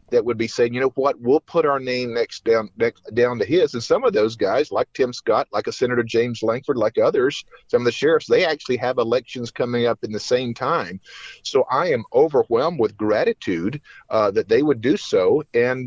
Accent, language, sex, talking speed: American, English, male, 225 wpm